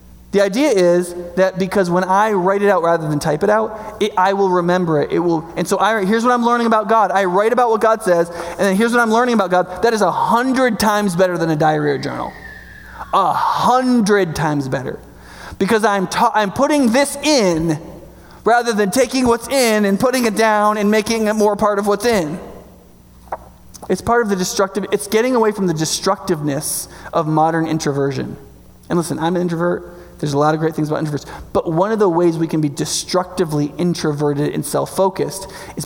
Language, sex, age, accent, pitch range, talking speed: English, male, 20-39, American, 155-210 Hz, 200 wpm